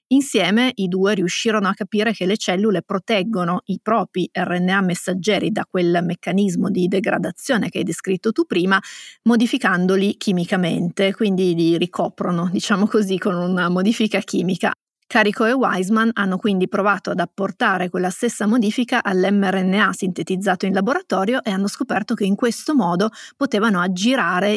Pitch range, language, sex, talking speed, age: 185-220 Hz, Italian, female, 145 wpm, 30-49